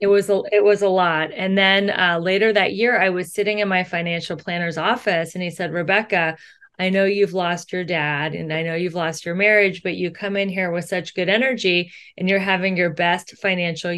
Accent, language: American, English